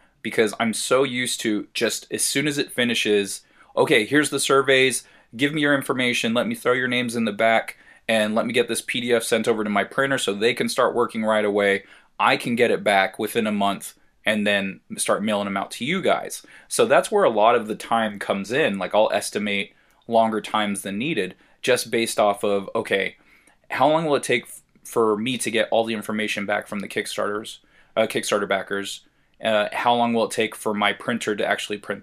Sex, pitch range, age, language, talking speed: male, 105-125 Hz, 20-39, English, 215 wpm